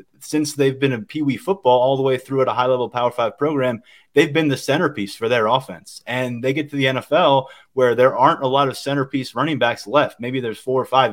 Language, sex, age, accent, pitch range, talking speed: English, male, 20-39, American, 120-145 Hz, 235 wpm